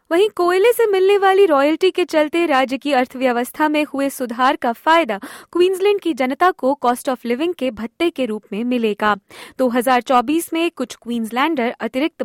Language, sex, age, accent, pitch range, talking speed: Hindi, female, 20-39, native, 240-330 Hz, 170 wpm